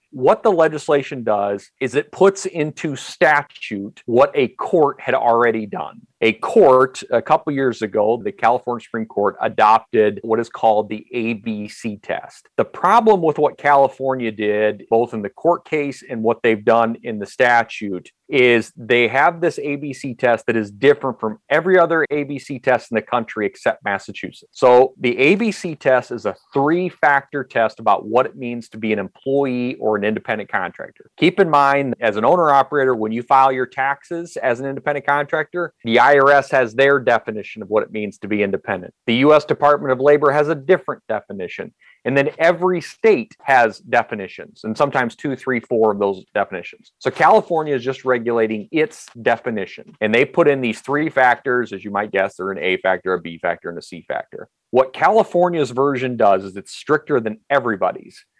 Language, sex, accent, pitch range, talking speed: English, male, American, 115-155 Hz, 180 wpm